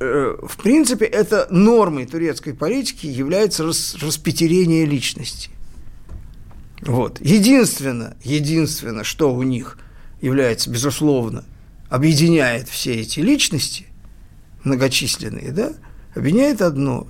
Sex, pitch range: male, 120-180 Hz